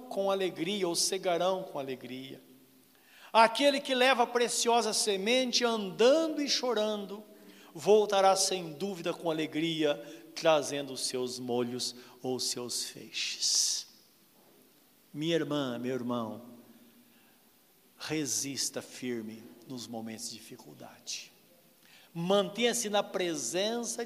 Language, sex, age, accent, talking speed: Portuguese, male, 60-79, Brazilian, 100 wpm